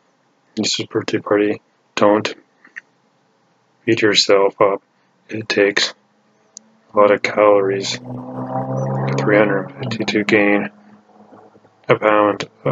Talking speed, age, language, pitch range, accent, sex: 95 wpm, 20-39, English, 100-105 Hz, American, male